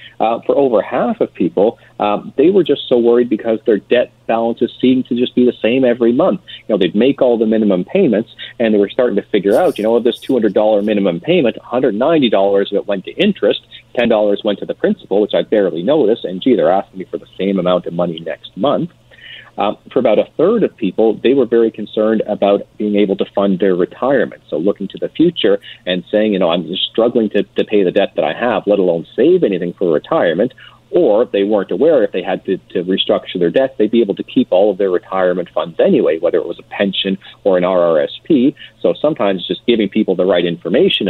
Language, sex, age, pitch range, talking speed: English, male, 40-59, 95-120 Hz, 225 wpm